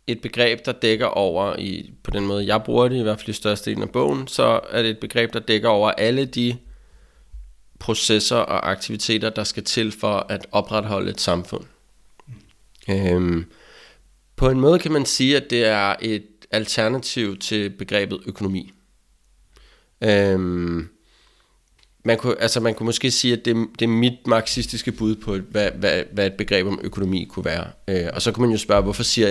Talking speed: 180 wpm